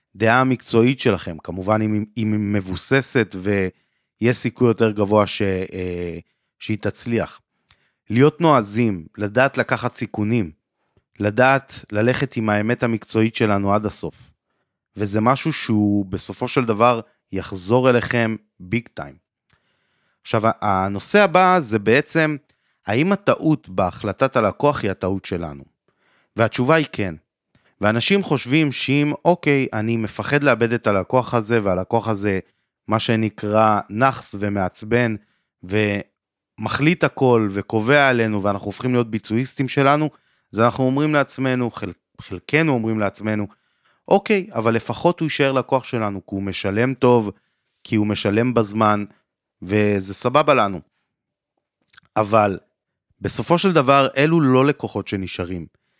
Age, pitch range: 30-49, 100-130 Hz